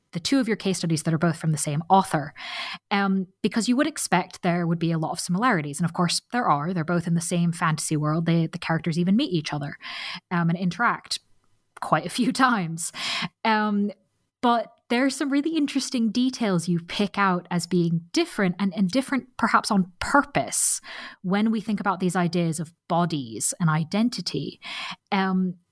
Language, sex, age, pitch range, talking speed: English, female, 20-39, 170-220 Hz, 190 wpm